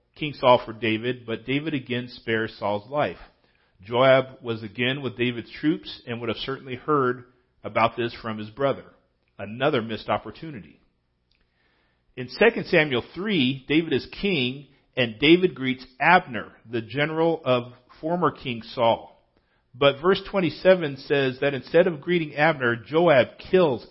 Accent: American